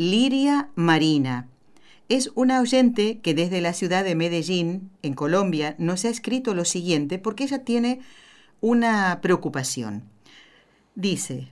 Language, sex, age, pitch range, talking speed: Spanish, female, 50-69, 160-225 Hz, 125 wpm